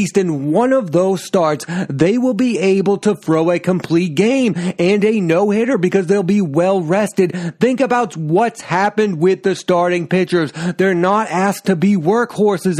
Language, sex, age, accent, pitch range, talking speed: English, male, 30-49, American, 175-215 Hz, 165 wpm